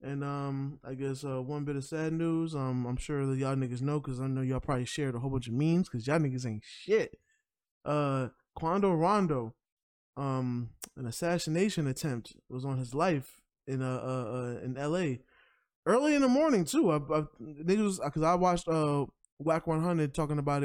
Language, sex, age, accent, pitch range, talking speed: English, male, 20-39, American, 130-155 Hz, 185 wpm